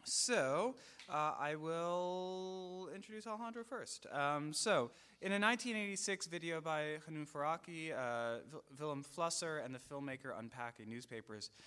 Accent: American